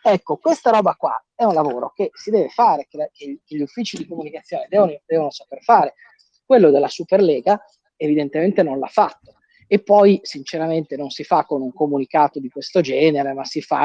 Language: Italian